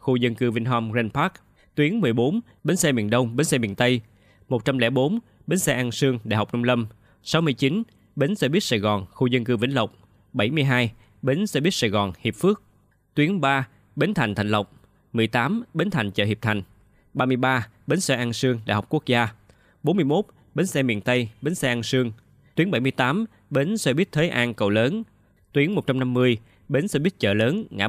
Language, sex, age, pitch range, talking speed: Vietnamese, male, 20-39, 105-140 Hz, 195 wpm